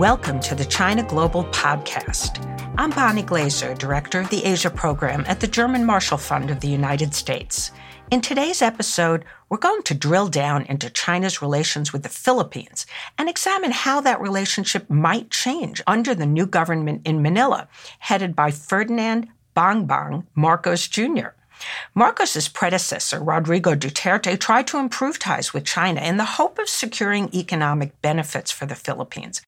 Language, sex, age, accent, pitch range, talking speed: English, female, 60-79, American, 150-230 Hz, 155 wpm